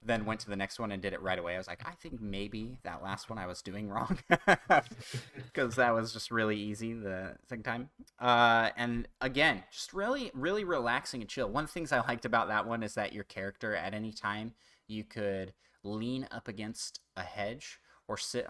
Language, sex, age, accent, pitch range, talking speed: English, male, 30-49, American, 95-115 Hz, 215 wpm